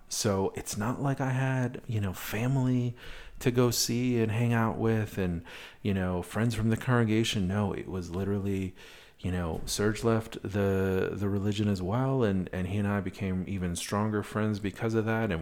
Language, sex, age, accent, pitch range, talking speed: English, male, 40-59, American, 95-125 Hz, 190 wpm